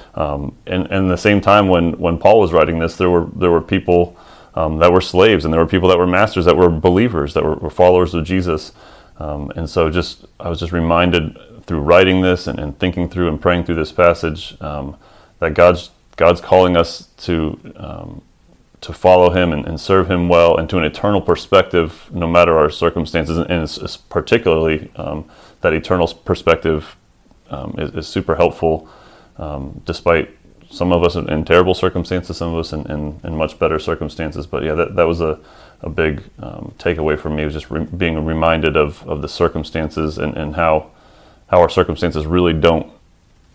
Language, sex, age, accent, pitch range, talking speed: English, male, 30-49, American, 80-90 Hz, 195 wpm